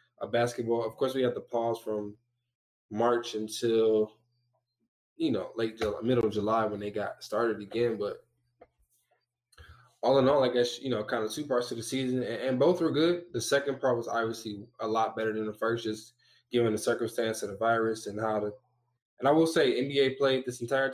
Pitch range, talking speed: 110-125 Hz, 205 wpm